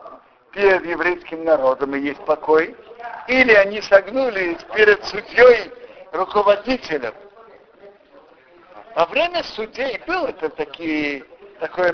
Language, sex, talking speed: Russian, male, 90 wpm